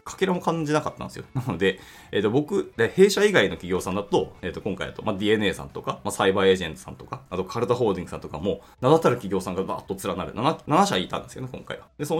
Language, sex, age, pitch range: Japanese, male, 20-39, 100-160 Hz